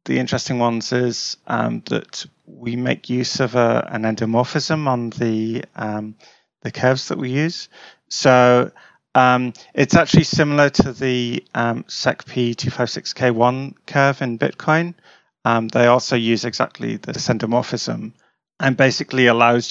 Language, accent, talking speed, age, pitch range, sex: English, British, 145 wpm, 30-49, 115-130 Hz, male